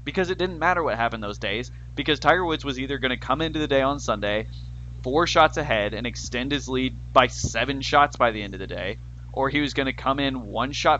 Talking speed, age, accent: 250 wpm, 20-39, American